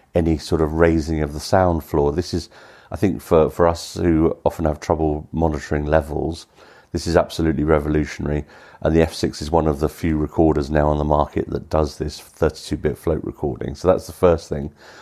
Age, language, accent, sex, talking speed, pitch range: 50-69, English, British, male, 195 wpm, 80-100 Hz